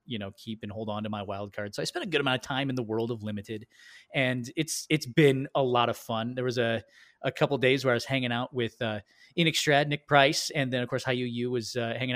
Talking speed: 280 wpm